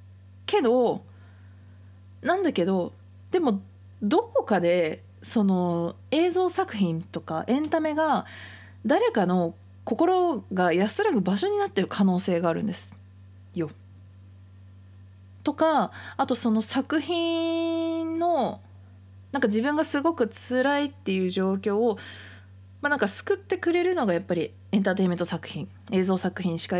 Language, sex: Japanese, female